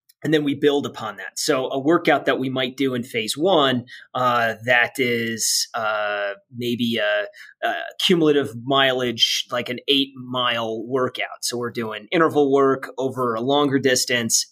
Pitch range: 115-135 Hz